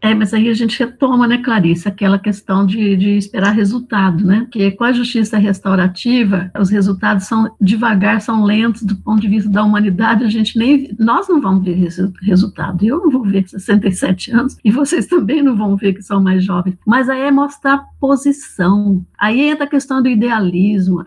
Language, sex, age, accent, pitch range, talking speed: Portuguese, female, 60-79, Brazilian, 200-270 Hz, 195 wpm